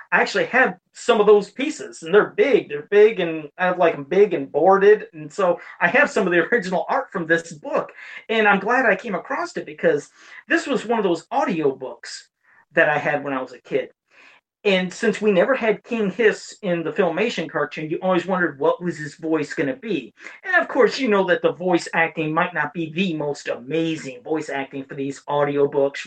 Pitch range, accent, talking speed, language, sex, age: 160-230 Hz, American, 215 wpm, English, male, 40-59